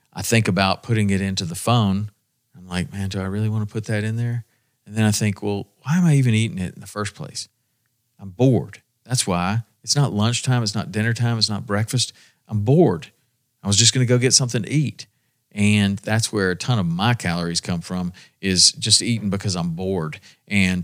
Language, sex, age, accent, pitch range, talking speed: English, male, 40-59, American, 100-120 Hz, 225 wpm